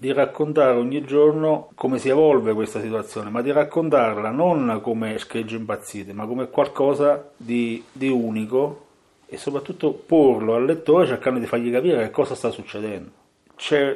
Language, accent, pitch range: Italian, native, 110-145 Hz